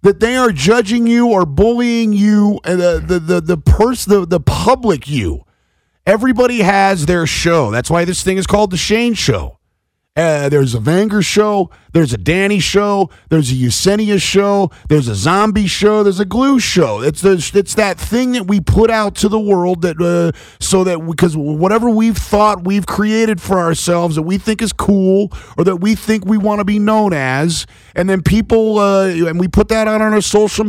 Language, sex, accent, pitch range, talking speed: English, male, American, 170-220 Hz, 205 wpm